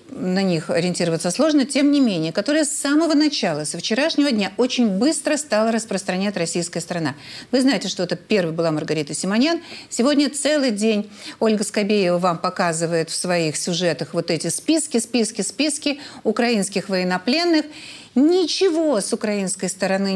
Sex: female